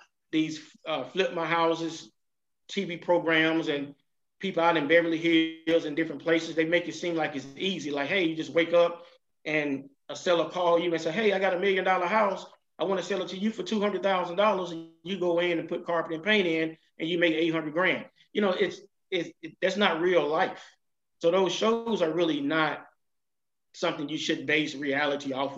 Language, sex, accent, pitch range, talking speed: English, male, American, 150-180 Hz, 205 wpm